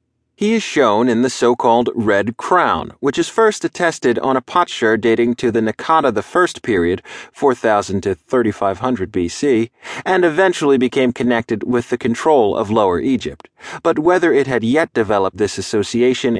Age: 30-49